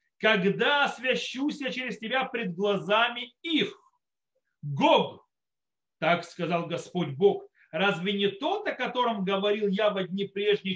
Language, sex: Russian, male